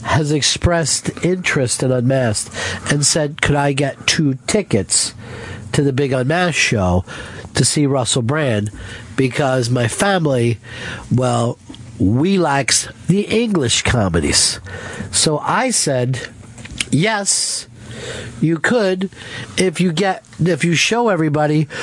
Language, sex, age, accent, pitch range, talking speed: English, male, 50-69, American, 120-155 Hz, 120 wpm